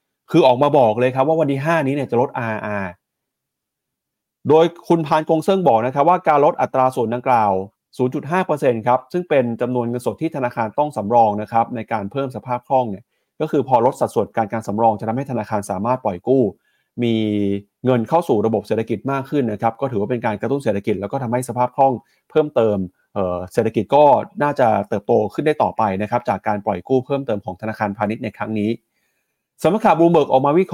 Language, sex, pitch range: Thai, male, 110-140 Hz